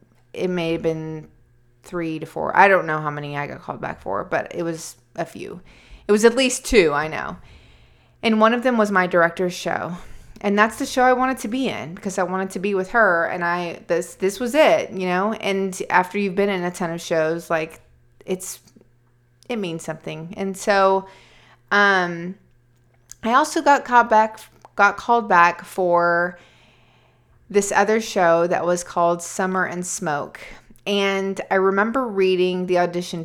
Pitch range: 165-205 Hz